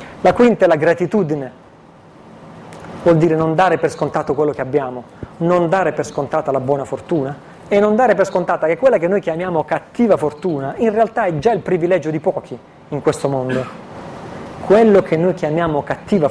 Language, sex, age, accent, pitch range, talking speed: Italian, male, 30-49, native, 145-185 Hz, 180 wpm